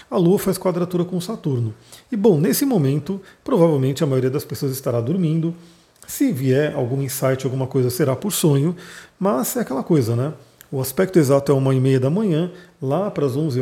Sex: male